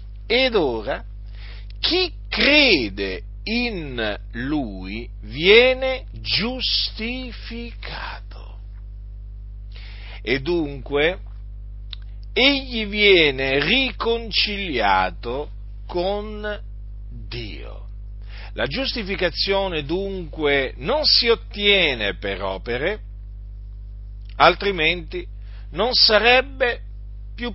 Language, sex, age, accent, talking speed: Italian, male, 50-69, native, 60 wpm